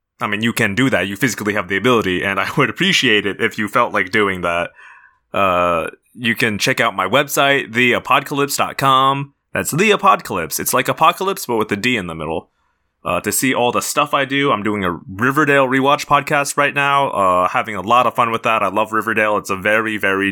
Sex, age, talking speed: male, 20-39, 220 wpm